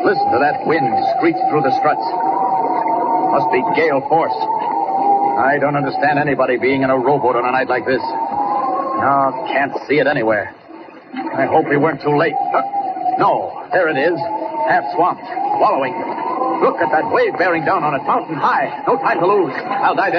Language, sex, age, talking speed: English, male, 60-79, 175 wpm